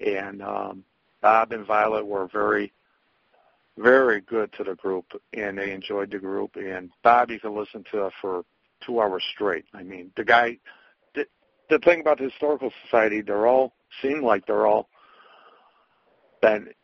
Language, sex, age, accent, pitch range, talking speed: English, male, 60-79, American, 100-130 Hz, 165 wpm